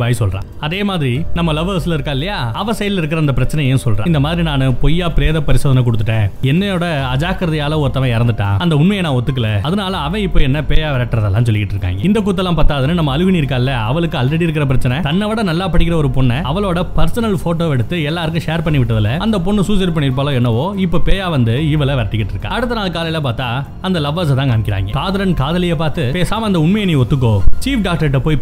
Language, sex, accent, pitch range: Tamil, male, native, 130-175 Hz